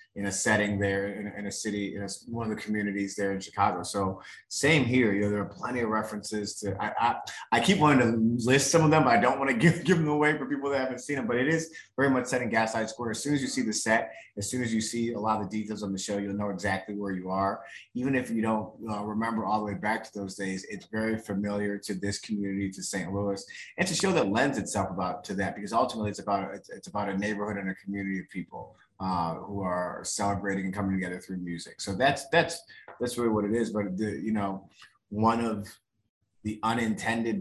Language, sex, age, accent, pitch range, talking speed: English, male, 30-49, American, 100-110 Hz, 255 wpm